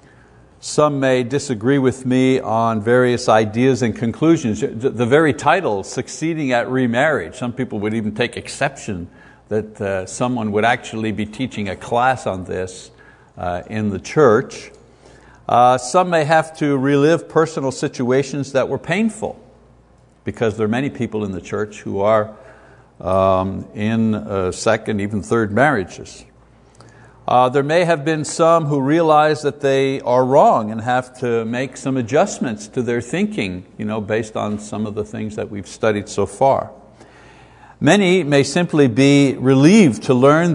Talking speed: 150 wpm